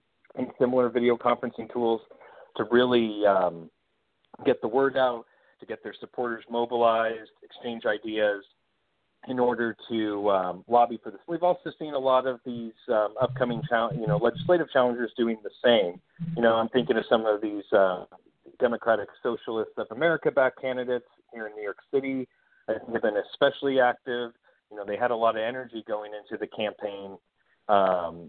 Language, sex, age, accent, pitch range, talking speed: English, male, 40-59, American, 110-130 Hz, 170 wpm